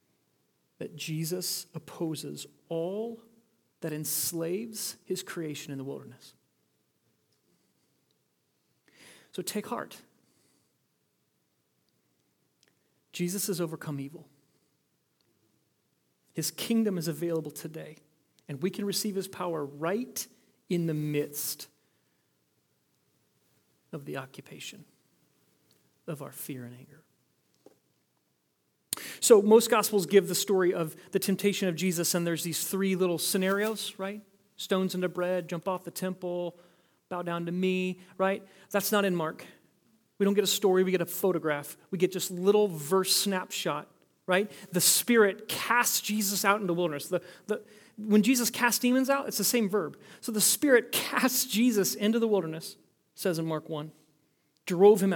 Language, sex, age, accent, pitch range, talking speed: English, male, 40-59, American, 160-200 Hz, 135 wpm